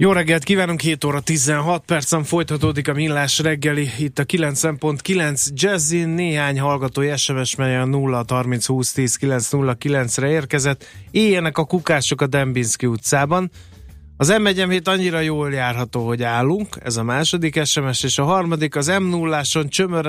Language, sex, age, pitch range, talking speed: Hungarian, male, 30-49, 125-155 Hz, 135 wpm